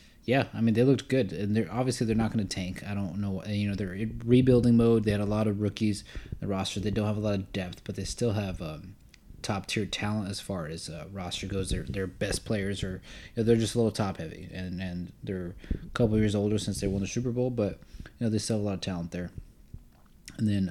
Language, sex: English, male